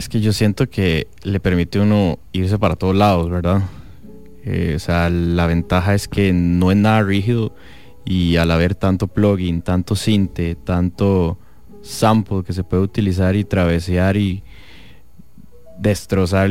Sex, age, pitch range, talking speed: male, 20-39, 90-105 Hz, 150 wpm